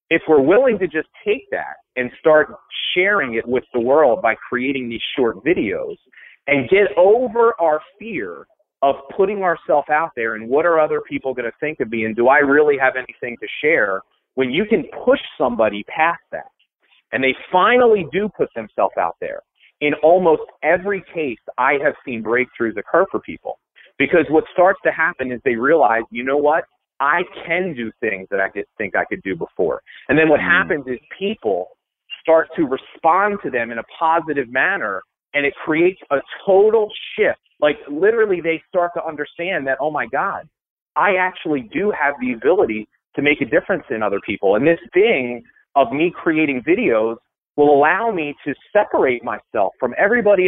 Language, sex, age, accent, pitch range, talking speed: English, male, 40-59, American, 140-205 Hz, 185 wpm